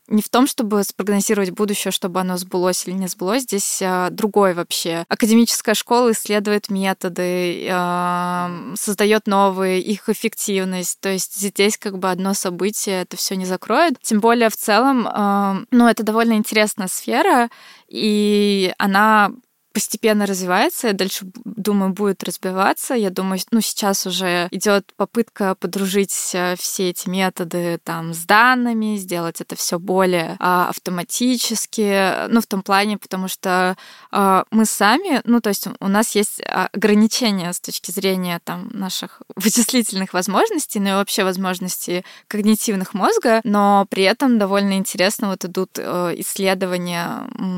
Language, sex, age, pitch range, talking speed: Russian, female, 20-39, 185-220 Hz, 140 wpm